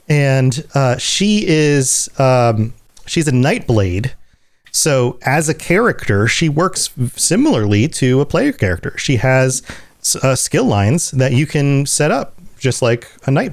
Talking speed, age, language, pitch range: 145 wpm, 30-49, English, 115-145 Hz